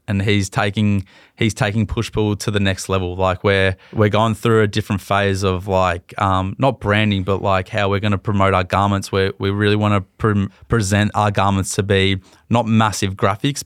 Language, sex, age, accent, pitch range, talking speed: English, male, 20-39, Australian, 95-105 Hz, 205 wpm